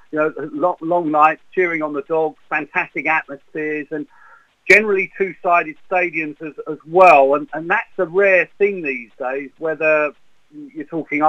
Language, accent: English, British